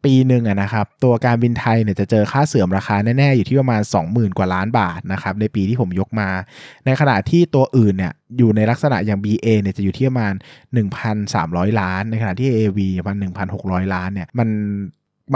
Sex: male